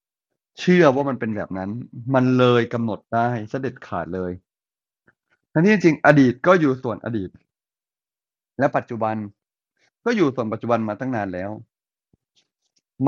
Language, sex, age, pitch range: Thai, male, 30-49, 110-135 Hz